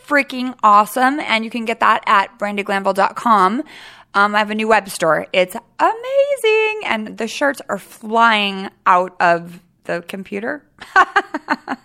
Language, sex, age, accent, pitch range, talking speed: English, female, 20-39, American, 210-310 Hz, 135 wpm